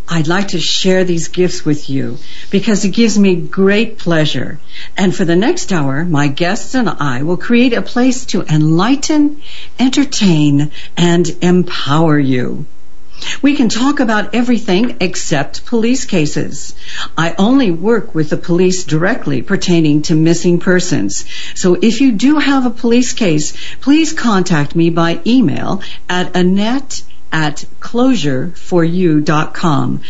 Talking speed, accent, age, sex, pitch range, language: 140 wpm, American, 60-79, female, 160-230 Hz, English